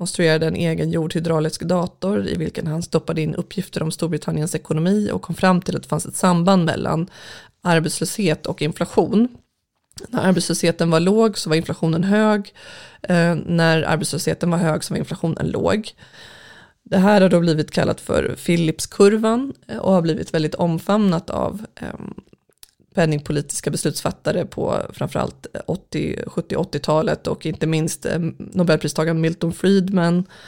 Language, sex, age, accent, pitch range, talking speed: Swedish, female, 20-39, native, 155-180 Hz, 135 wpm